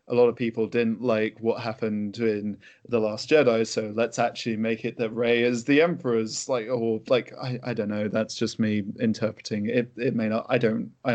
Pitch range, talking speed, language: 110-130 Hz, 215 wpm, English